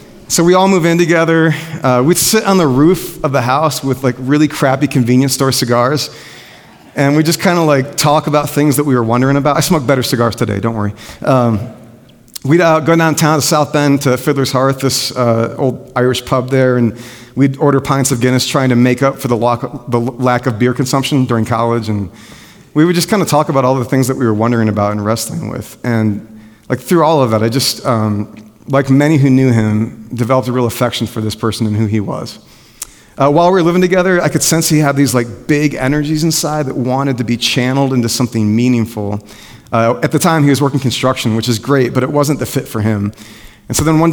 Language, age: English, 40-59